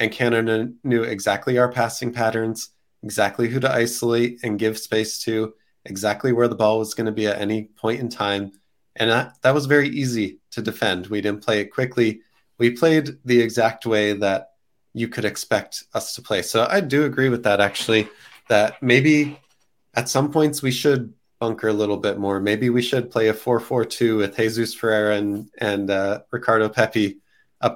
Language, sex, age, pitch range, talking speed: English, male, 20-39, 105-125 Hz, 190 wpm